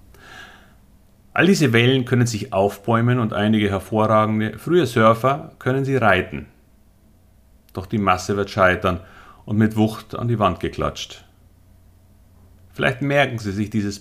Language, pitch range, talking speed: German, 95-120 Hz, 135 wpm